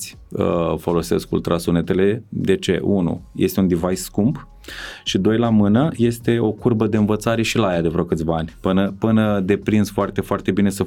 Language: Romanian